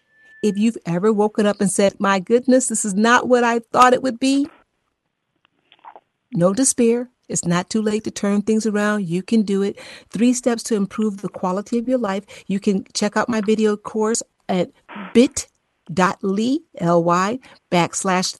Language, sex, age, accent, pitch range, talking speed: English, female, 50-69, American, 185-250 Hz, 165 wpm